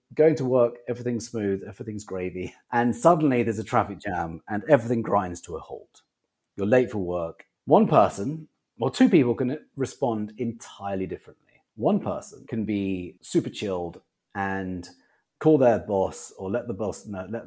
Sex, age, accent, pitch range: male, 30-49, British, 100-145 Hz